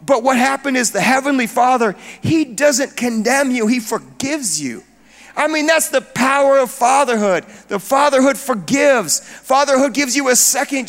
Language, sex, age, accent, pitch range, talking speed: English, male, 40-59, American, 235-285 Hz, 160 wpm